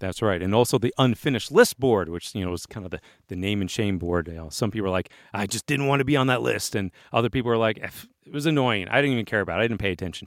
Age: 40-59